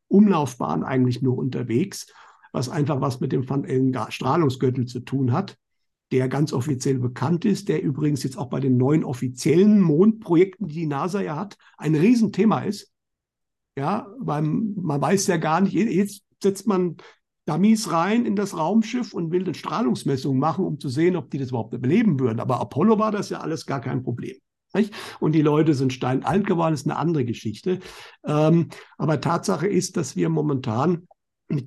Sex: male